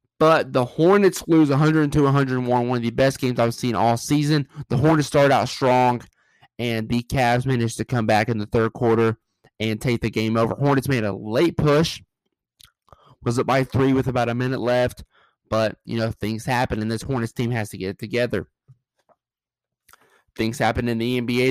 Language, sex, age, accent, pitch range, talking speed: English, male, 20-39, American, 110-125 Hz, 190 wpm